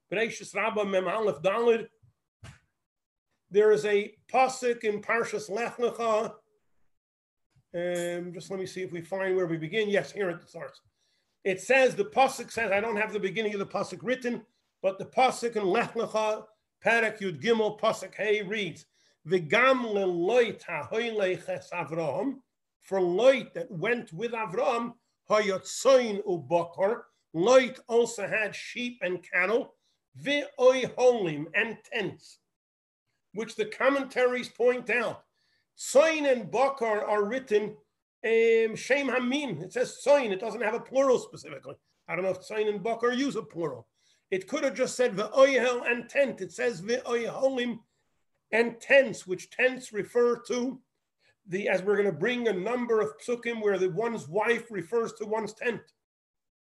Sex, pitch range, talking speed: male, 190-245 Hz, 145 wpm